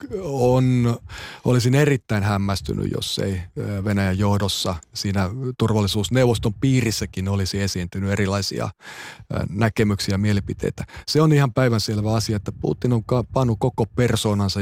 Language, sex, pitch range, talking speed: Finnish, male, 95-115 Hz, 115 wpm